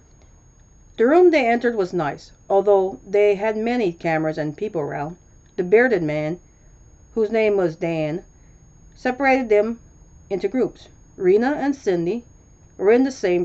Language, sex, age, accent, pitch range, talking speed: English, female, 40-59, American, 160-245 Hz, 145 wpm